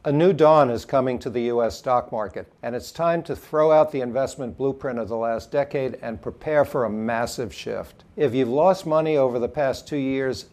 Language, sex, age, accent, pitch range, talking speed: English, male, 60-79, American, 125-150 Hz, 215 wpm